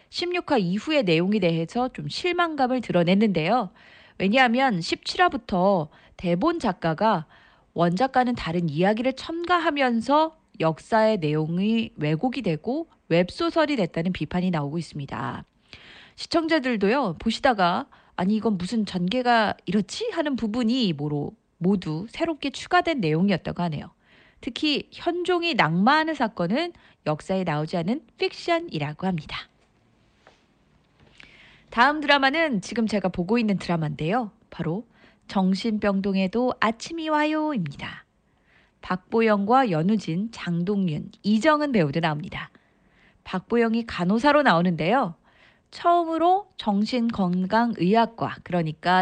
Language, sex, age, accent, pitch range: Korean, female, 30-49, native, 175-265 Hz